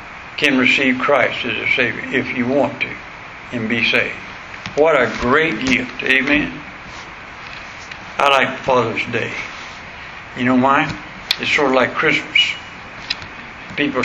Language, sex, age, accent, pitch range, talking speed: English, male, 60-79, American, 130-150 Hz, 130 wpm